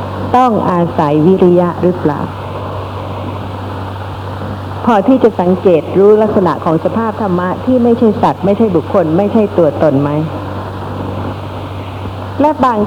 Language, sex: Thai, female